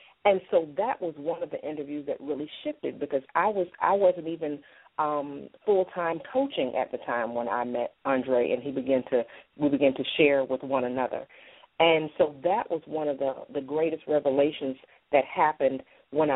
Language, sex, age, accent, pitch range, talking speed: English, female, 40-59, American, 140-180 Hz, 190 wpm